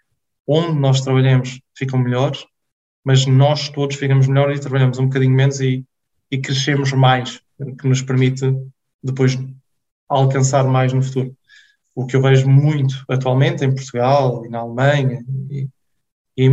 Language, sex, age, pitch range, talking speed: Portuguese, male, 20-39, 130-140 Hz, 150 wpm